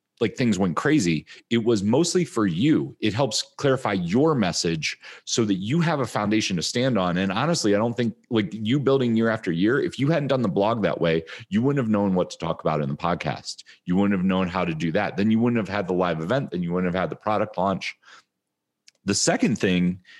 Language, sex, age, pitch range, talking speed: English, male, 30-49, 95-130 Hz, 240 wpm